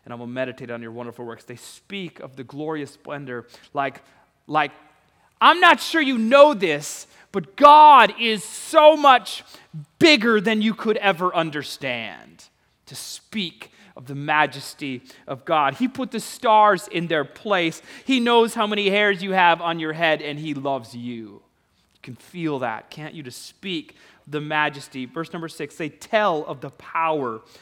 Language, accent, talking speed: English, American, 170 wpm